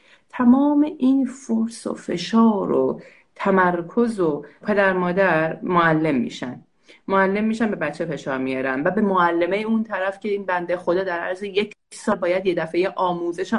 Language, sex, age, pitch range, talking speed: Persian, female, 30-49, 185-240 Hz, 155 wpm